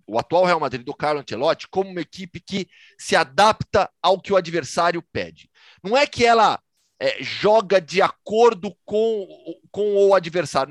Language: Portuguese